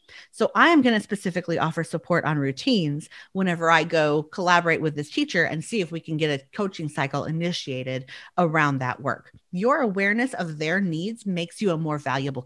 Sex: female